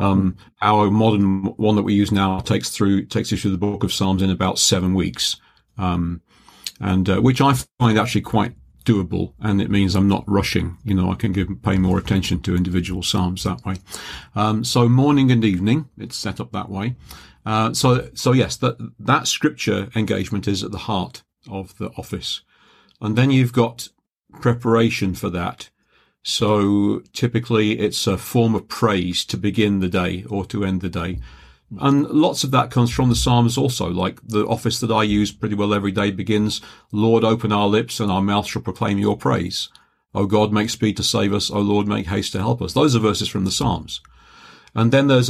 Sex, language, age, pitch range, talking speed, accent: male, English, 50-69, 95-115 Hz, 200 wpm, British